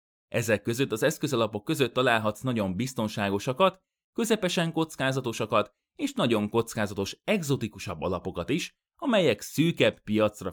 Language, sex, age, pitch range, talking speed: Hungarian, male, 30-49, 105-155 Hz, 110 wpm